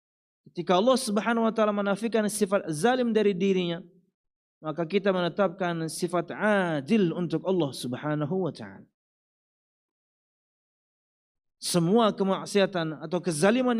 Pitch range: 175-225 Hz